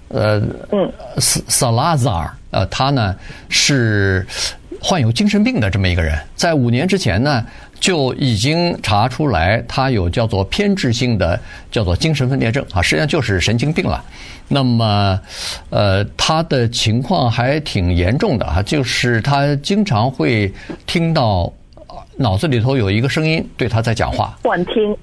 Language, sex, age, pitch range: Chinese, male, 50-69, 105-135 Hz